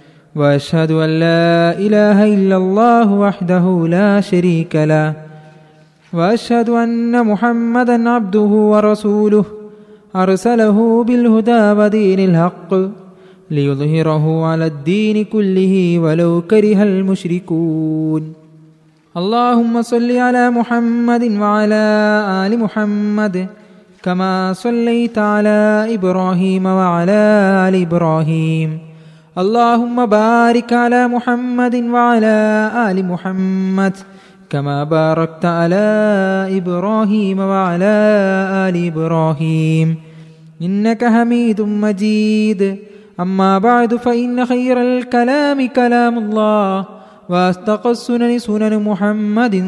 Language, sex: Malayalam, male